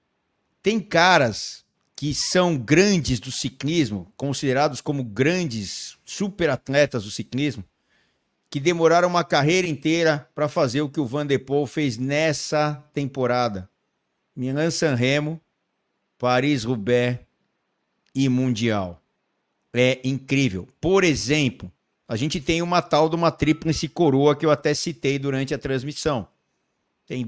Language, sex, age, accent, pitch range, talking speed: Portuguese, male, 50-69, Brazilian, 130-165 Hz, 125 wpm